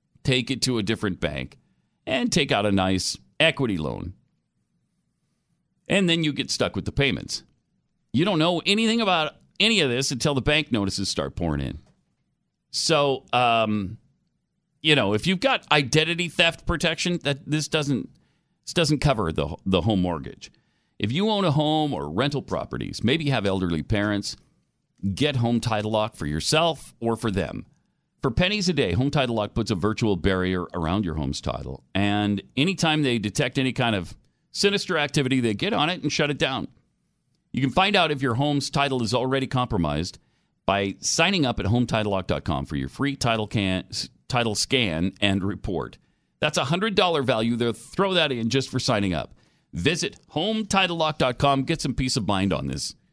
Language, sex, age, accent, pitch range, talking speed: English, male, 40-59, American, 100-155 Hz, 175 wpm